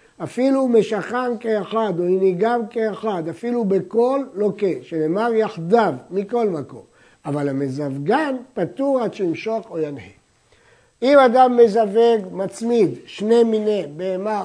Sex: male